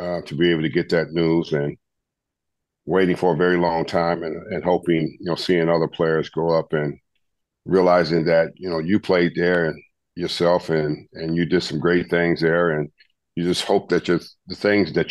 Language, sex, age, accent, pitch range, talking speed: English, male, 50-69, American, 80-85 Hz, 205 wpm